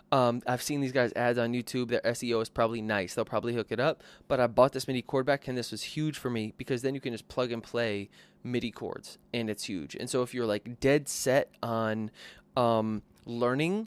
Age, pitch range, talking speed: 20-39, 115-140 Hz, 235 wpm